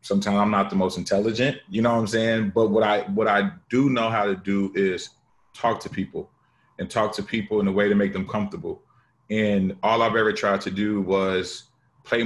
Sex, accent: male, American